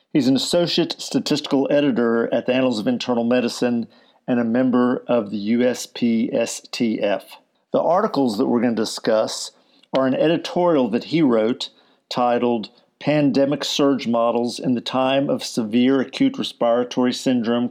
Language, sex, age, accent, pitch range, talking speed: English, male, 50-69, American, 125-145 Hz, 140 wpm